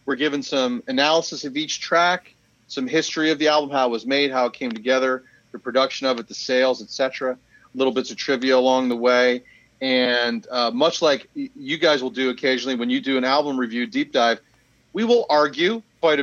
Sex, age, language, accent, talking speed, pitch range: male, 40-59, English, American, 205 wpm, 125-150 Hz